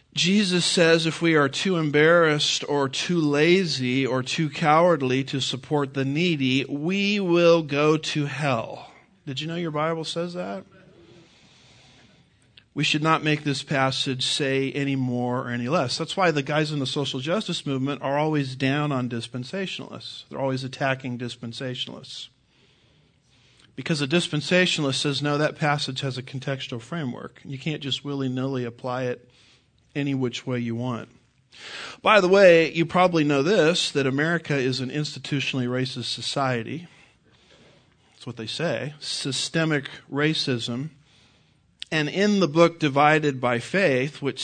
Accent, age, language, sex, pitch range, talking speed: American, 50-69, English, male, 130-155 Hz, 145 wpm